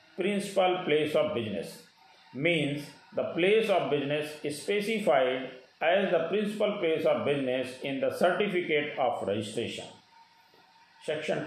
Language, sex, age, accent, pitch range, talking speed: Hindi, male, 50-69, native, 145-195 Hz, 115 wpm